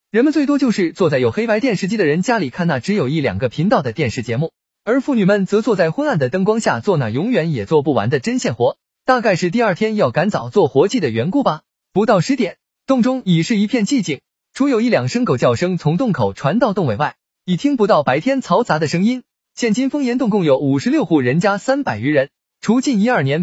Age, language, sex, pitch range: 20-39, Chinese, male, 165-245 Hz